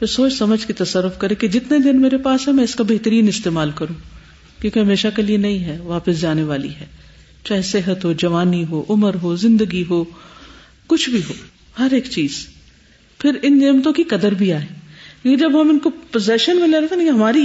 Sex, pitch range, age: female, 170-255 Hz, 50-69